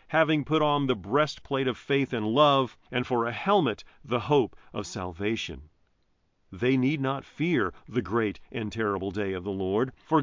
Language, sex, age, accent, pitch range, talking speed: English, male, 40-59, American, 100-150 Hz, 175 wpm